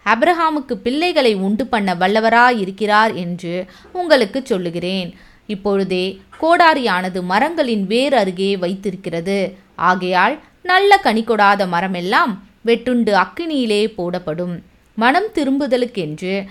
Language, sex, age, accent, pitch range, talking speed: Tamil, female, 20-39, native, 180-235 Hz, 85 wpm